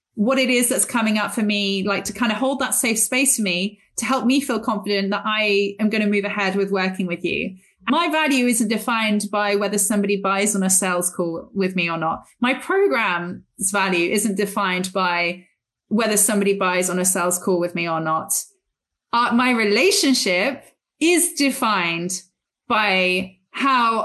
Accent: British